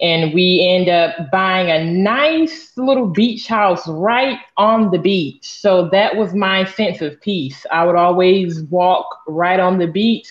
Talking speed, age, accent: 170 wpm, 20-39, American